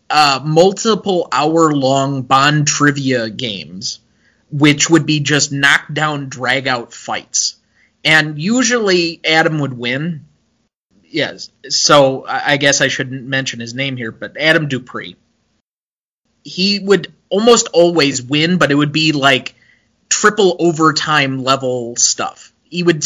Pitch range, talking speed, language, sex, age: 130-160 Hz, 115 wpm, English, male, 20-39